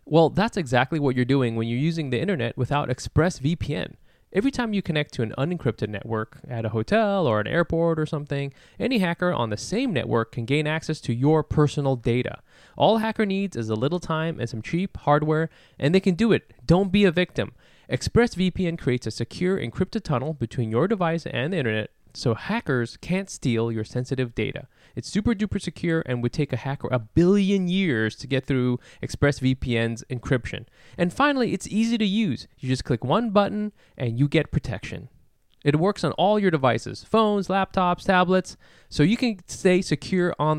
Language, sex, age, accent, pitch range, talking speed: English, male, 20-39, American, 125-180 Hz, 190 wpm